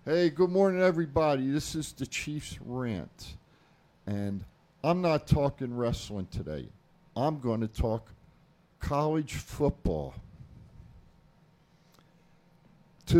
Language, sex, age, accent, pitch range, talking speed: English, male, 50-69, American, 115-160 Hz, 100 wpm